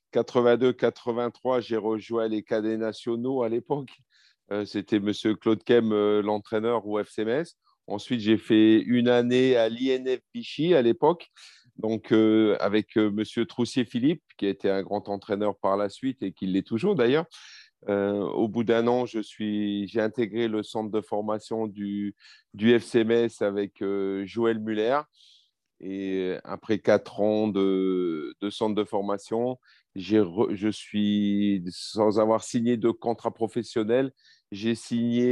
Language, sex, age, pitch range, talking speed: French, male, 40-59, 100-120 Hz, 155 wpm